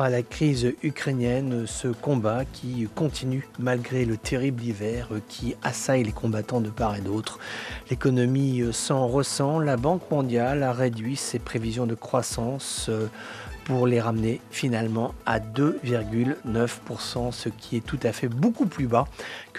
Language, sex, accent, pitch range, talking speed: English, male, French, 115-135 Hz, 145 wpm